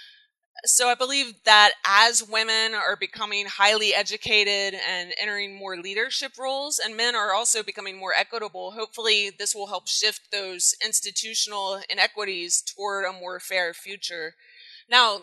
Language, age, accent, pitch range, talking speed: English, 20-39, American, 195-230 Hz, 140 wpm